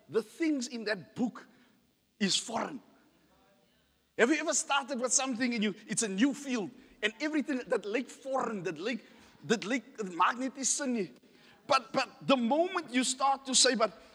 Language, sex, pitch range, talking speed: English, male, 220-275 Hz, 175 wpm